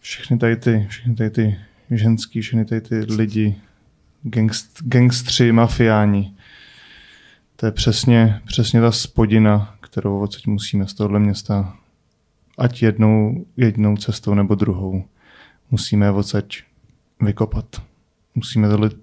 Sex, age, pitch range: male, 20-39, 100-115 Hz